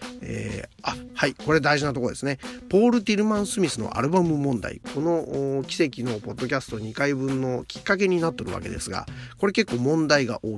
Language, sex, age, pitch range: Japanese, male, 40-59, 120-195 Hz